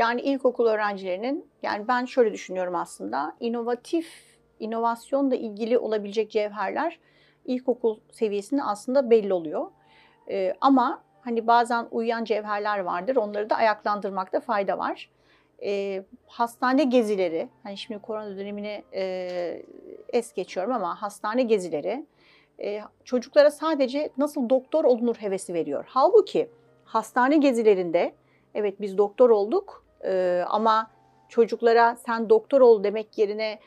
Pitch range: 205-245 Hz